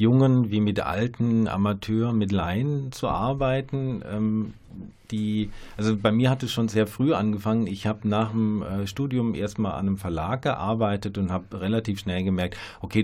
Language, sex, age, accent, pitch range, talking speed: German, male, 40-59, German, 95-110 Hz, 165 wpm